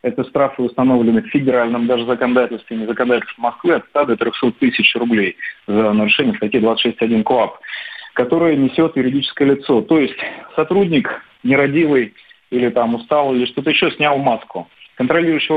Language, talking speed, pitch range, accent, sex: Russian, 150 wpm, 120-145 Hz, native, male